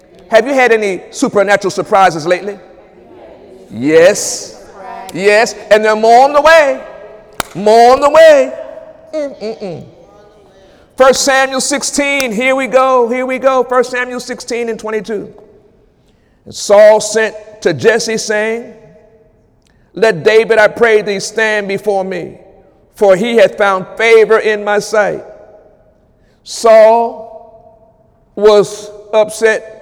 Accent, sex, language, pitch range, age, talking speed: American, male, English, 210-245 Hz, 50-69, 120 wpm